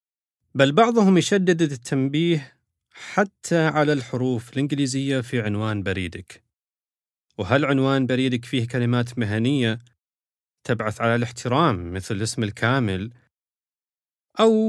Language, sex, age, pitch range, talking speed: Arabic, male, 30-49, 105-150 Hz, 100 wpm